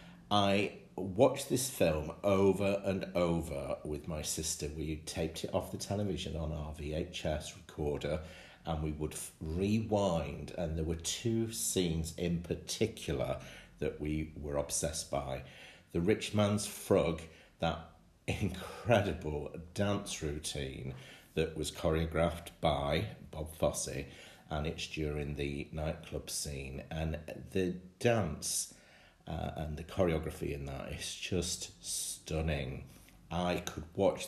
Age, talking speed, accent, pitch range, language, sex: 50-69, 125 wpm, British, 75-95 Hz, English, male